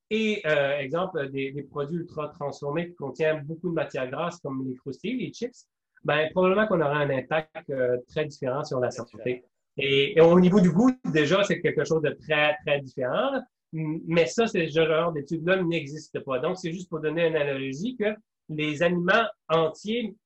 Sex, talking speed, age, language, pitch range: male, 185 wpm, 30-49, French, 150-195 Hz